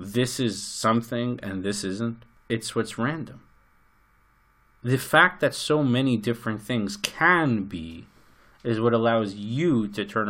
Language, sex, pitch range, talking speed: English, male, 100-145 Hz, 140 wpm